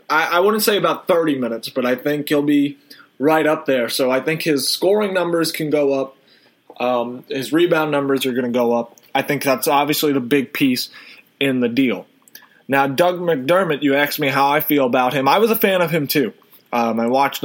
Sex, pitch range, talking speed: male, 130-150 Hz, 215 wpm